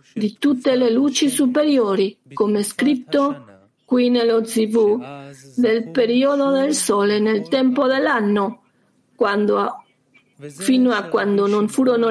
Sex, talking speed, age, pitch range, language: female, 115 wpm, 50-69, 205-260 Hz, Italian